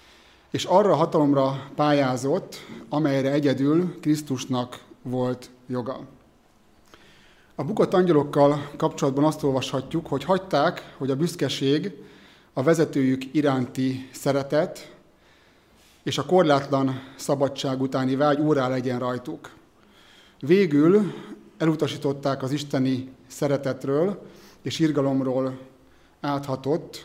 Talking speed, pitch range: 95 wpm, 130-155 Hz